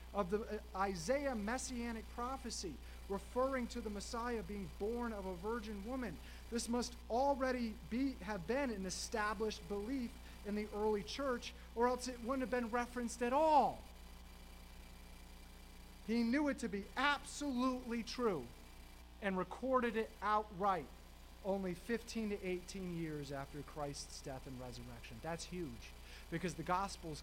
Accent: American